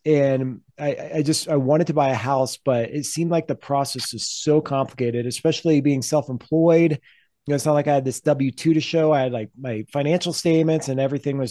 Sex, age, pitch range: male, 30-49, 135-165 Hz